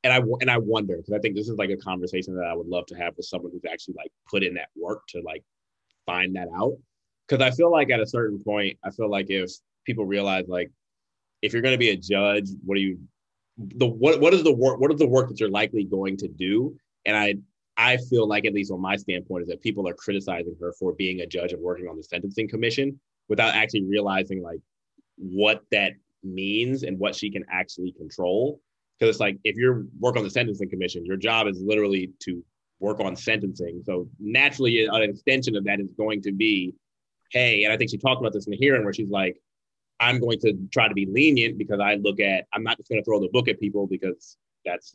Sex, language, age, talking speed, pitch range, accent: male, English, 20-39, 235 wpm, 95-115 Hz, American